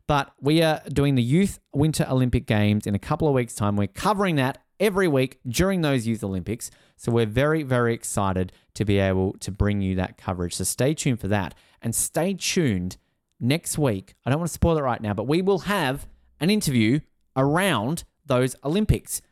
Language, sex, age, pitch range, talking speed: English, male, 30-49, 100-145 Hz, 200 wpm